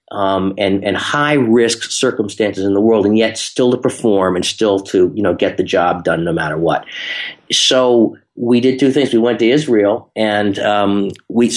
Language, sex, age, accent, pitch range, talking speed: English, male, 40-59, American, 105-135 Hz, 195 wpm